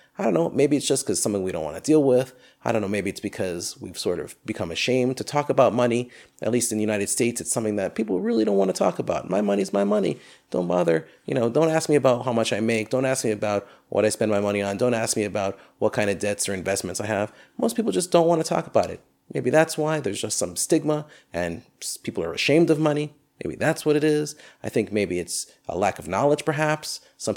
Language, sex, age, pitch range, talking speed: English, male, 30-49, 100-140 Hz, 265 wpm